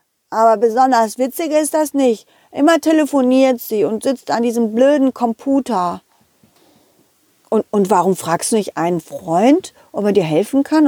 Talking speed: 155 wpm